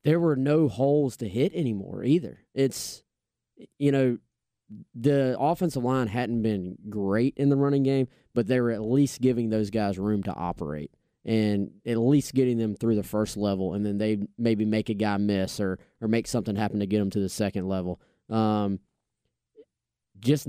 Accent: American